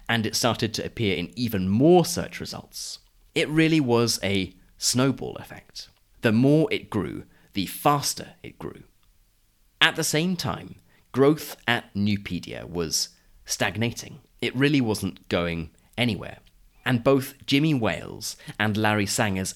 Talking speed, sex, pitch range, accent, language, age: 140 wpm, male, 95-125 Hz, British, English, 30-49